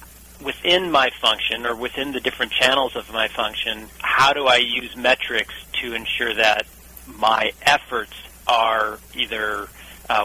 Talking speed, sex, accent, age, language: 140 wpm, male, American, 40-59, English